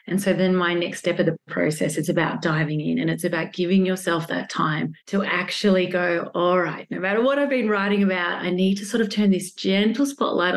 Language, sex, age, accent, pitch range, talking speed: English, female, 30-49, Australian, 175-215 Hz, 235 wpm